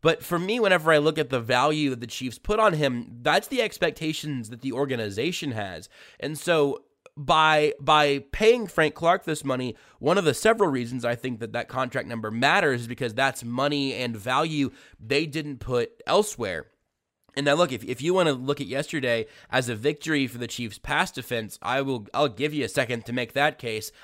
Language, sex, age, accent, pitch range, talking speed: English, male, 20-39, American, 125-150 Hz, 205 wpm